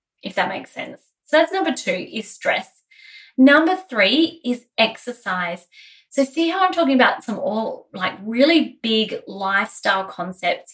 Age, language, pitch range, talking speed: 20-39, English, 190-250 Hz, 150 wpm